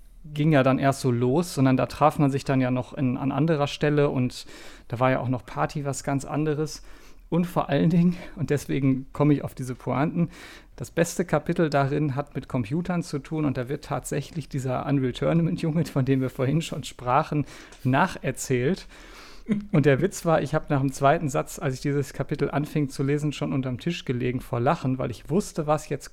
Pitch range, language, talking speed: 135-155 Hz, German, 205 wpm